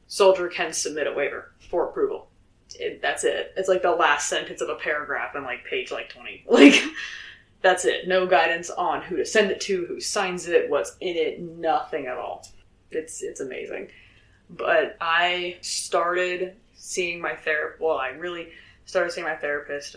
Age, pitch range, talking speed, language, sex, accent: 20-39, 155-215 Hz, 175 wpm, English, female, American